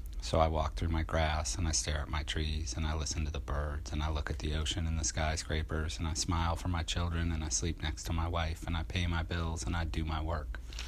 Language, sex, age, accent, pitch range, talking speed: English, male, 30-49, American, 75-85 Hz, 275 wpm